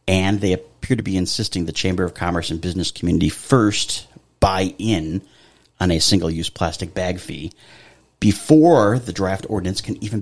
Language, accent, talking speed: English, American, 165 wpm